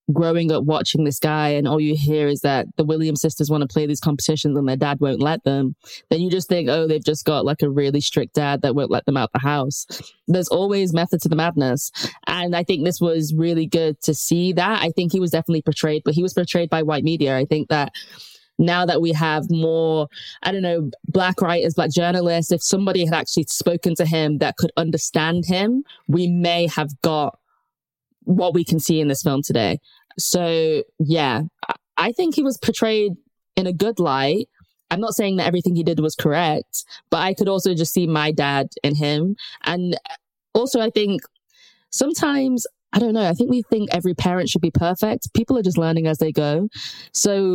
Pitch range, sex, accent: 155-185 Hz, female, British